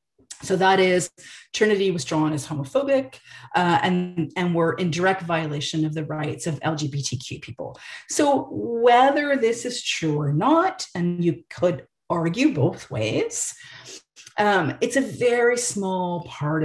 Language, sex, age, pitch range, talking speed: English, female, 40-59, 160-240 Hz, 145 wpm